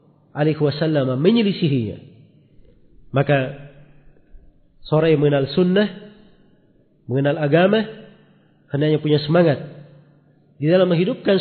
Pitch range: 140-190 Hz